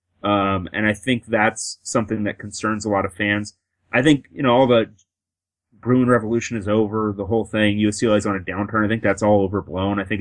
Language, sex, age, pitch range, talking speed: English, male, 30-49, 95-115 Hz, 215 wpm